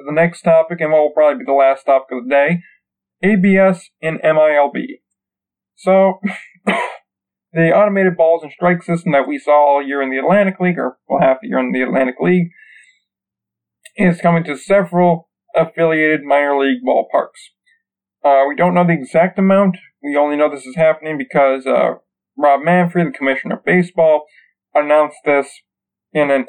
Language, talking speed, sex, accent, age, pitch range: English, 170 wpm, male, American, 40-59, 135-170 Hz